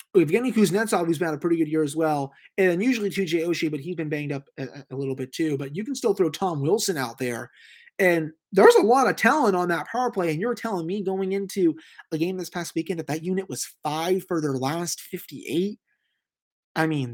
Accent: American